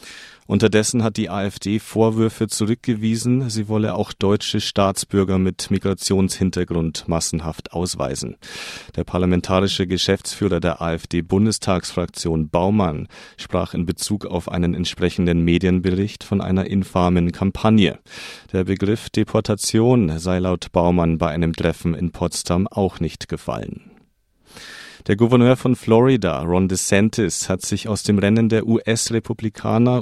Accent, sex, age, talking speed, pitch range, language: German, male, 40-59, 120 wpm, 90-110 Hz, German